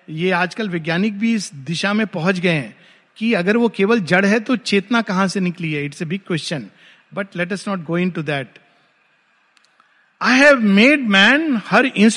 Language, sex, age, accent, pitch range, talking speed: Hindi, male, 50-69, native, 175-230 Hz, 155 wpm